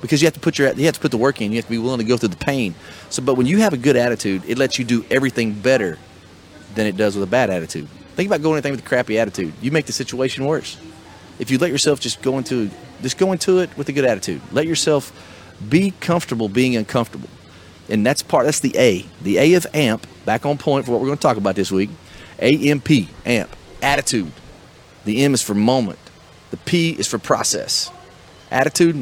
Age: 40-59